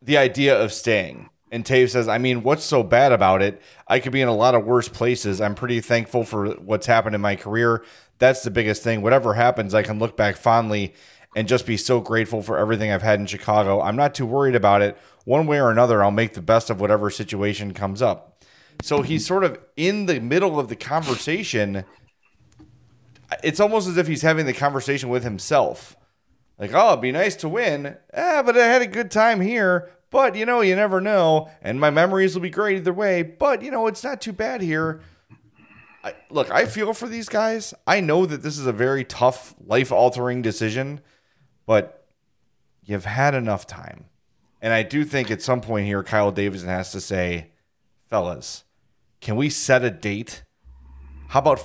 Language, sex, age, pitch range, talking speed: English, male, 30-49, 105-160 Hz, 200 wpm